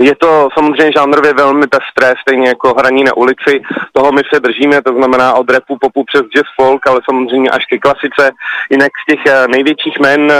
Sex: male